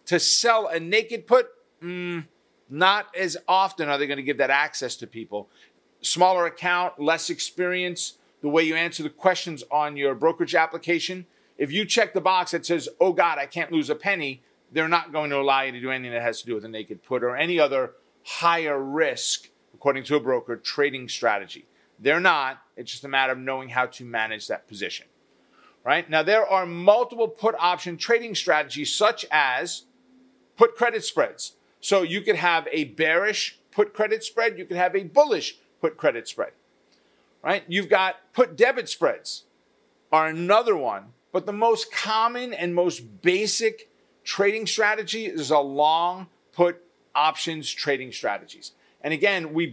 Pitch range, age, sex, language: 145-210 Hz, 40-59, male, English